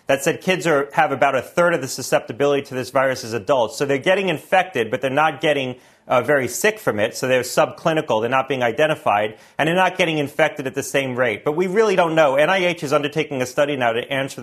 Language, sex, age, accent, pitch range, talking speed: English, male, 40-59, American, 130-160 Hz, 235 wpm